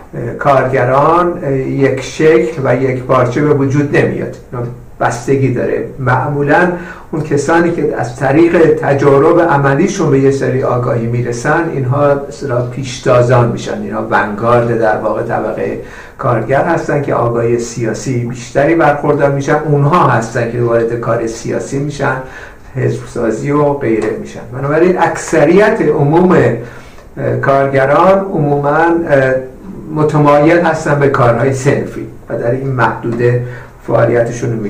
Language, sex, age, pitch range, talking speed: Persian, male, 60-79, 125-160 Hz, 120 wpm